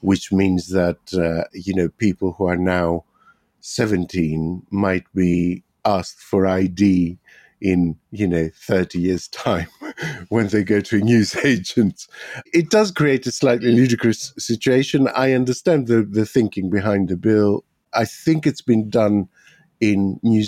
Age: 50-69